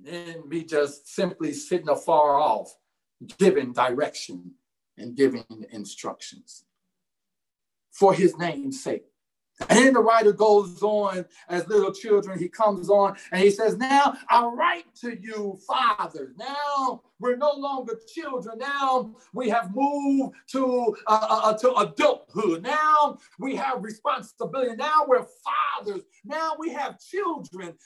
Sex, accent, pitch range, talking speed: male, American, 220-285 Hz, 135 wpm